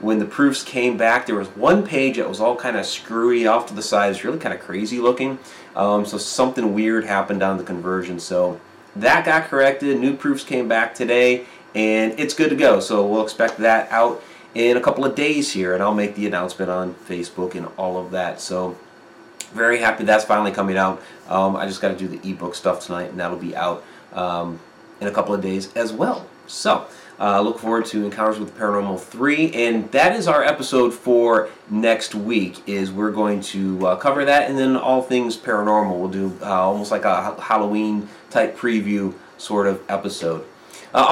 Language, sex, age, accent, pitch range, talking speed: English, male, 30-49, American, 100-125 Hz, 205 wpm